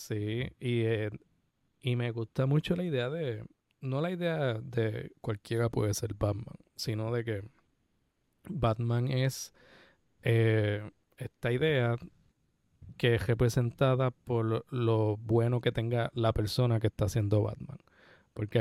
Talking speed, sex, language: 135 wpm, male, Spanish